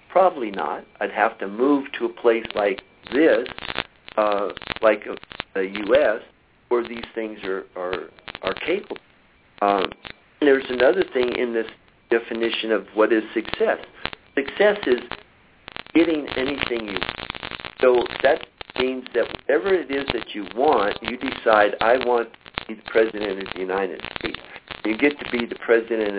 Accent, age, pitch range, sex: American, 50-69, 105-130 Hz, male